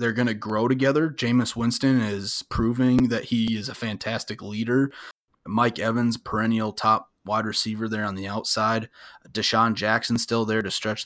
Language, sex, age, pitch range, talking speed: English, male, 20-39, 105-120 Hz, 170 wpm